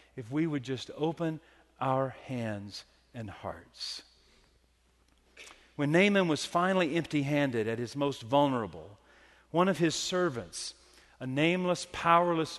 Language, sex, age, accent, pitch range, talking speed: English, male, 40-59, American, 115-180 Hz, 125 wpm